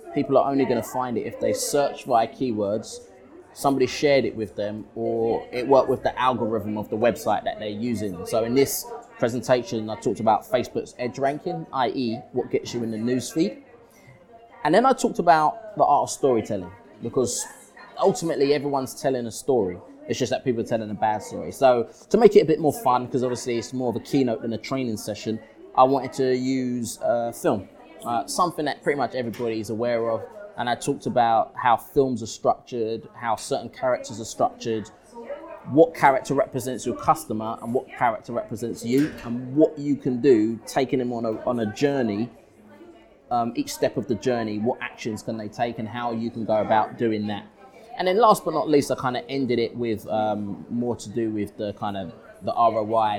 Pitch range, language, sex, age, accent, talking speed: 110-140 Hz, English, male, 20-39, British, 200 wpm